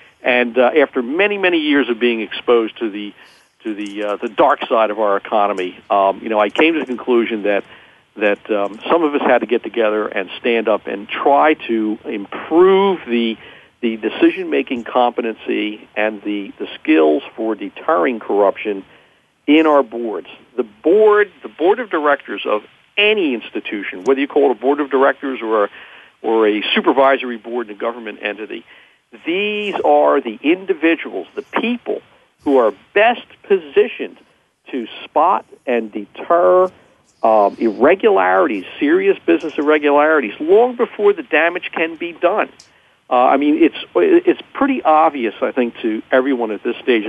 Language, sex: English, male